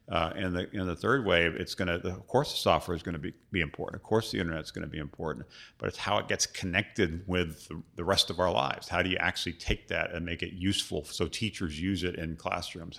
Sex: male